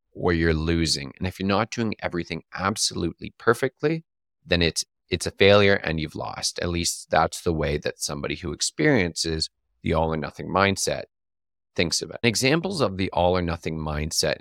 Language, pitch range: English, 80-105 Hz